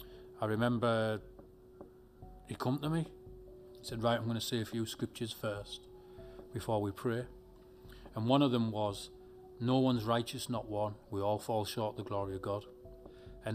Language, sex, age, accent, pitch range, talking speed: English, male, 30-49, British, 105-125 Hz, 175 wpm